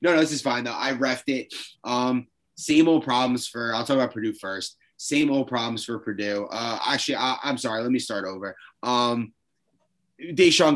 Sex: male